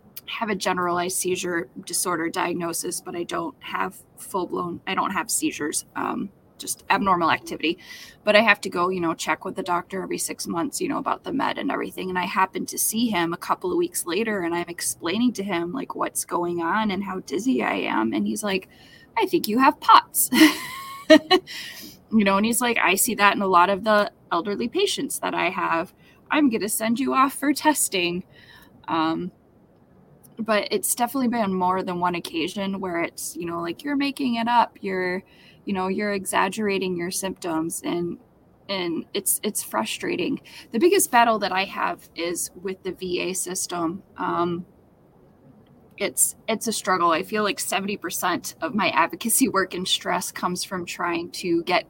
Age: 20-39